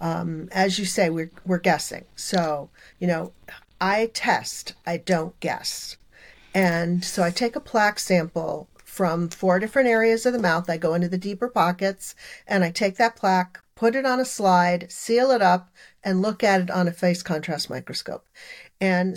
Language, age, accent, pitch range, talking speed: English, 50-69, American, 180-220 Hz, 180 wpm